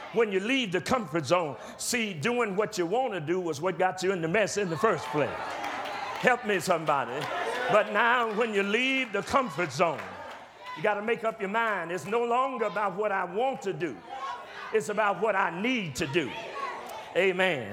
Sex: male